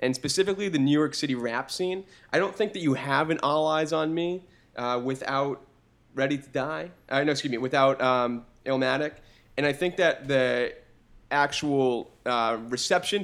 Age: 20-39